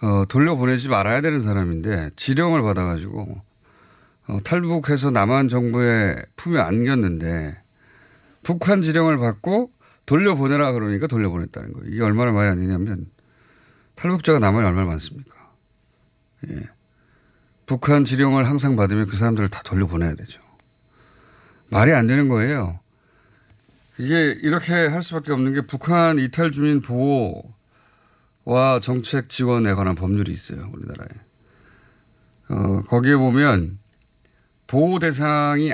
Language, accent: Korean, native